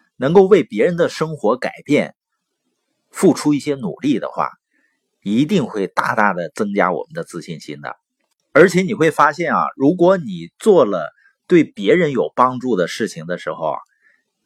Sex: male